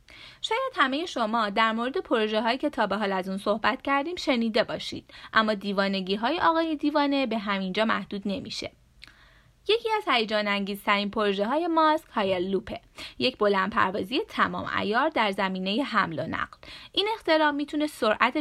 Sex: female